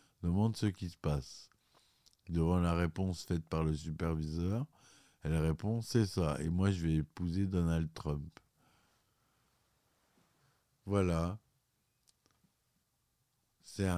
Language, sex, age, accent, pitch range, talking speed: French, male, 50-69, French, 80-100 Hz, 105 wpm